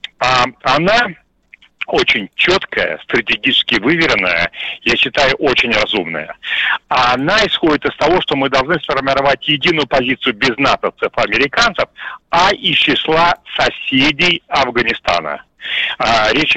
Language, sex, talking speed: Russian, male, 100 wpm